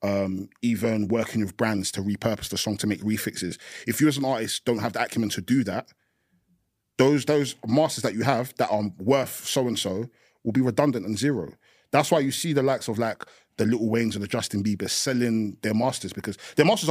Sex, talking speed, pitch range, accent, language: male, 215 wpm, 105-125 Hz, British, English